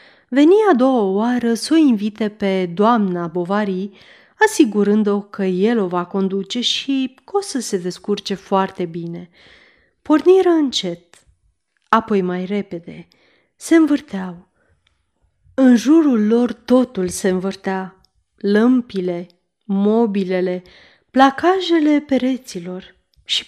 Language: Romanian